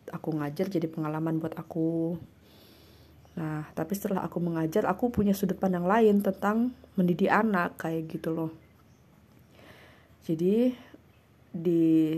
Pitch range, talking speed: 155-190 Hz, 120 wpm